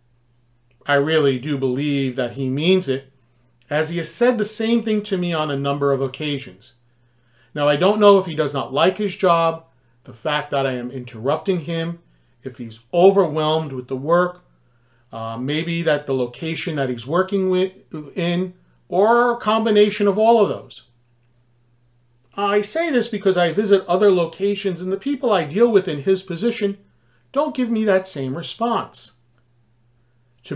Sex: male